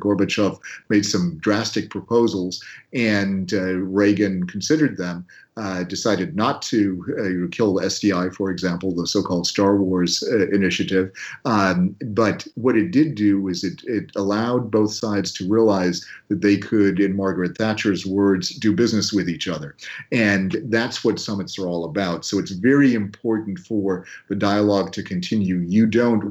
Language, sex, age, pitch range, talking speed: English, male, 40-59, 90-105 Hz, 155 wpm